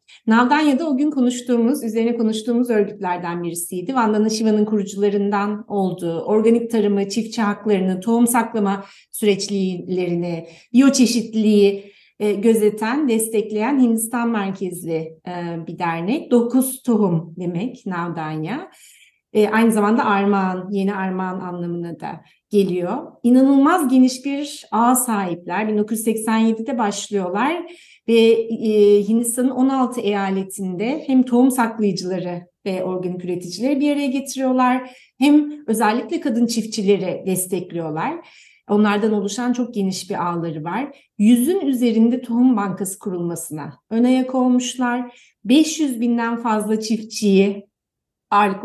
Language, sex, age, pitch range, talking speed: Turkish, female, 30-49, 195-245 Hz, 105 wpm